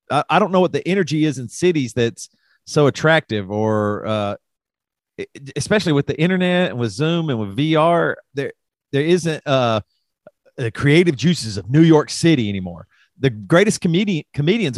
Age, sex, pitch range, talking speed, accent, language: 40-59, male, 125-180 Hz, 160 wpm, American, English